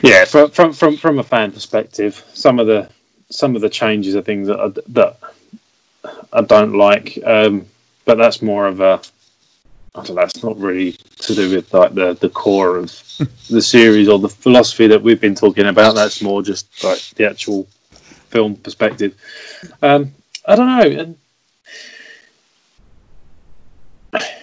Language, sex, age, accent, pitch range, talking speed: English, male, 20-39, British, 100-135 Hz, 160 wpm